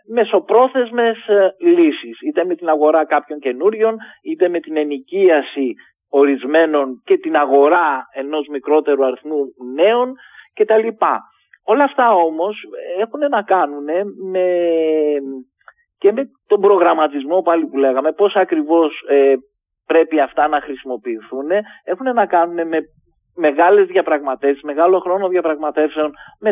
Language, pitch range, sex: Greek, 145-215 Hz, male